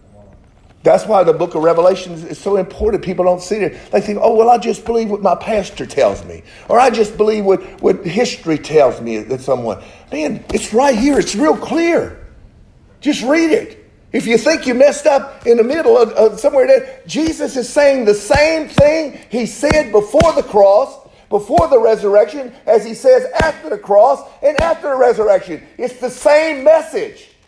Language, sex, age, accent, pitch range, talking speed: English, male, 50-69, American, 180-285 Hz, 190 wpm